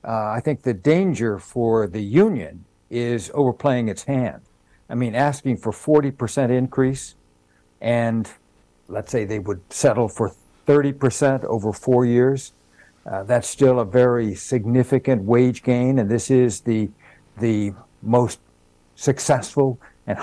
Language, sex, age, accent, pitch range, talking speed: English, male, 60-79, American, 115-135 Hz, 140 wpm